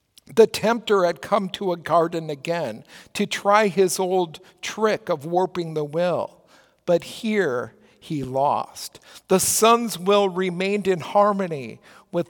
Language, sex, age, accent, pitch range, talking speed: English, male, 50-69, American, 175-230 Hz, 135 wpm